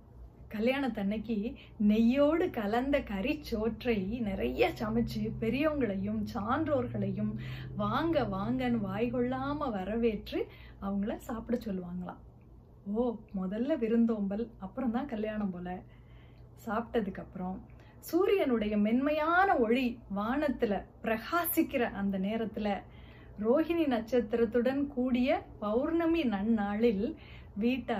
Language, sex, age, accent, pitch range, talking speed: Tamil, female, 30-49, native, 210-265 Hz, 75 wpm